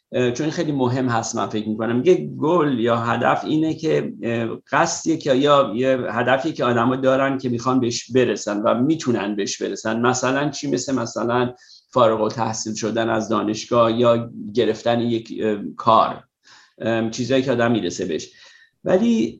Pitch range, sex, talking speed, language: 115-135 Hz, male, 150 wpm, Persian